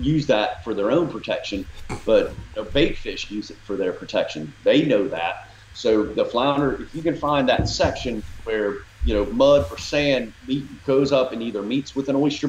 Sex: male